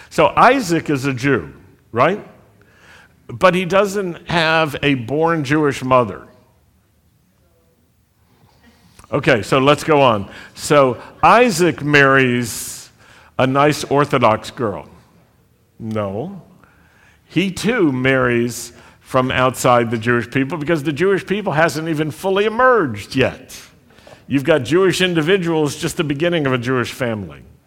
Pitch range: 120-155 Hz